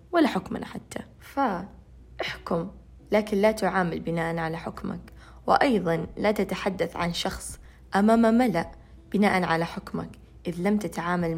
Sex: female